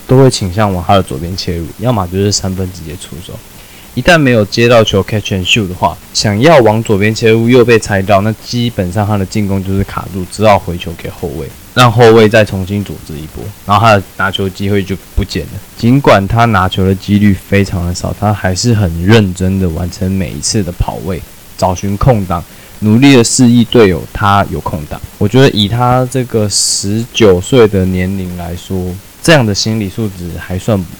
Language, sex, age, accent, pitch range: Chinese, male, 20-39, native, 95-115 Hz